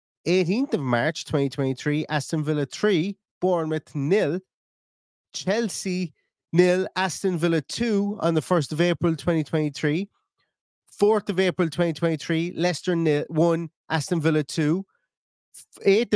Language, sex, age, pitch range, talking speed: English, male, 30-49, 155-185 Hz, 115 wpm